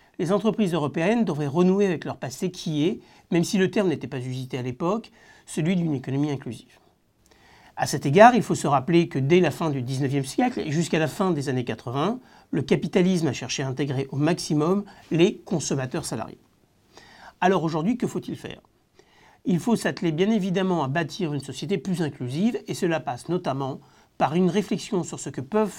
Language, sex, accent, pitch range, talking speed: French, male, French, 140-190 Hz, 190 wpm